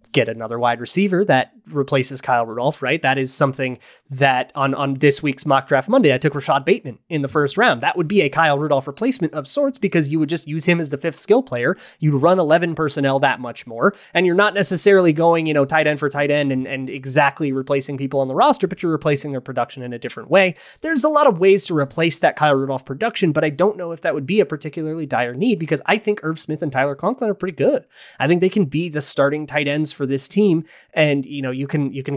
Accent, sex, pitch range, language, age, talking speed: American, male, 140-185 Hz, English, 20-39, 255 wpm